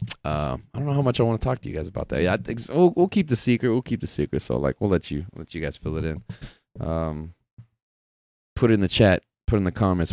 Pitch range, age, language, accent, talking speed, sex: 75-100 Hz, 30-49, English, American, 295 wpm, male